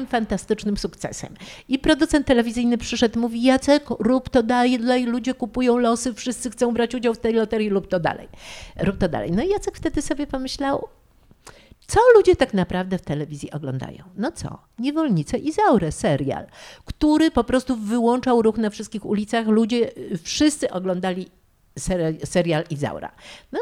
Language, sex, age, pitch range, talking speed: Polish, female, 50-69, 180-250 Hz, 150 wpm